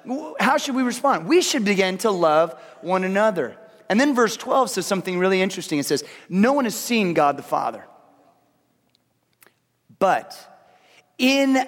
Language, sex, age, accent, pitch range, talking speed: English, male, 30-49, American, 165-250 Hz, 155 wpm